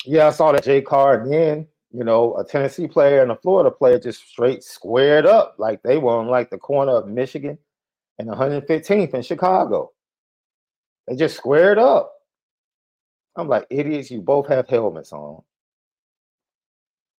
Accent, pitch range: American, 120-155 Hz